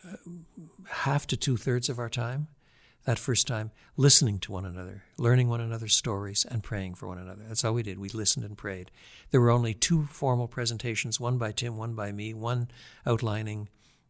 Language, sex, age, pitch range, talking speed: English, male, 60-79, 100-125 Hz, 190 wpm